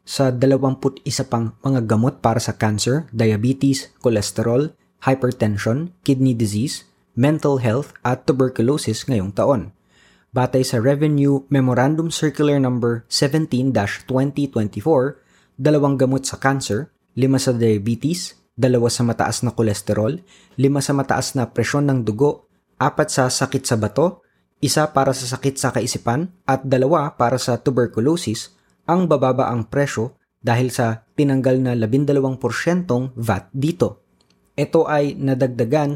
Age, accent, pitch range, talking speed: 20-39, native, 115-140 Hz, 130 wpm